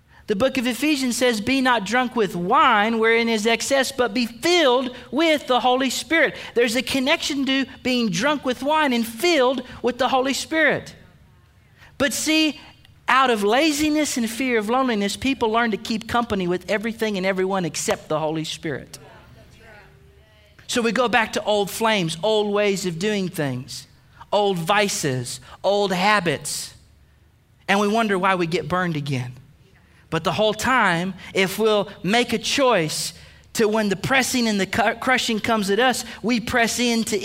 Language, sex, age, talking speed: English, male, 40-59, 165 wpm